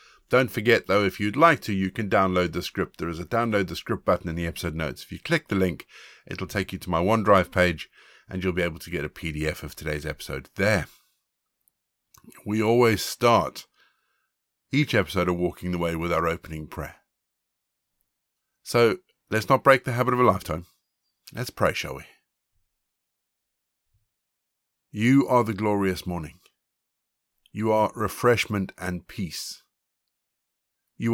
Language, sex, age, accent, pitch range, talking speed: English, male, 50-69, British, 90-110 Hz, 160 wpm